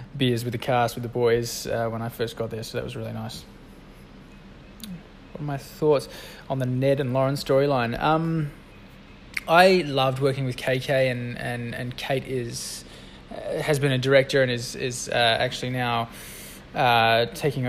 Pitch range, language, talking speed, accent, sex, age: 120-140 Hz, English, 175 wpm, Australian, male, 20-39